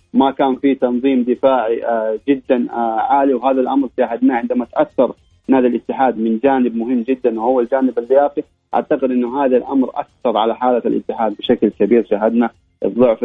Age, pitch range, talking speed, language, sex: 30-49, 120-140 Hz, 150 wpm, Arabic, male